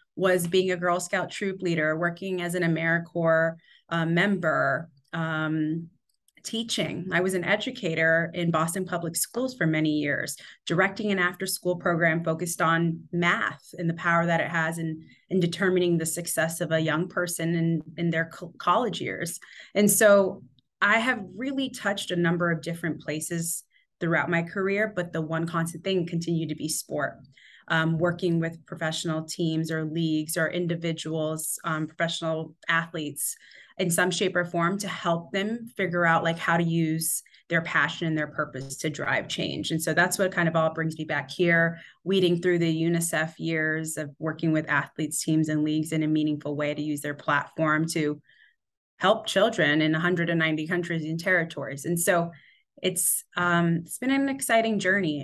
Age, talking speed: 30-49, 170 wpm